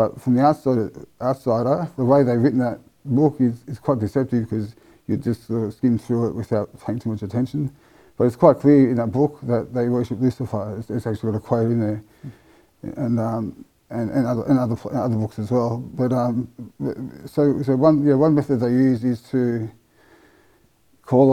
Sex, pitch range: male, 115-130 Hz